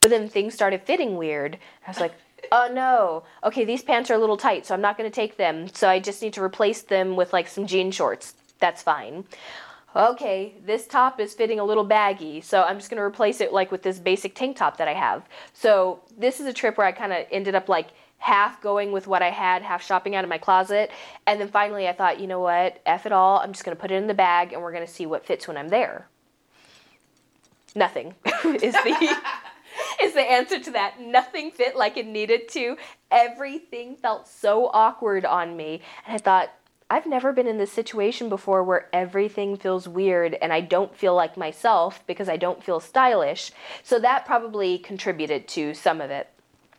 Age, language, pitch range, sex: 20-39, English, 185-235 Hz, female